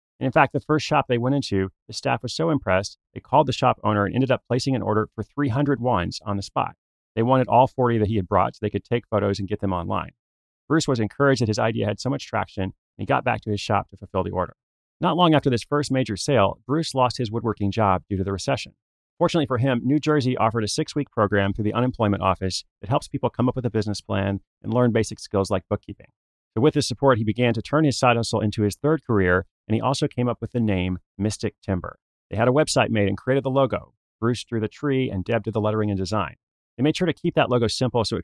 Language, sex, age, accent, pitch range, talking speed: English, male, 30-49, American, 100-130 Hz, 260 wpm